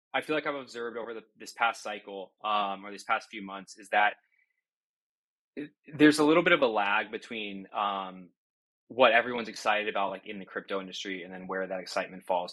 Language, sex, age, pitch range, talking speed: English, male, 20-39, 95-120 Hz, 205 wpm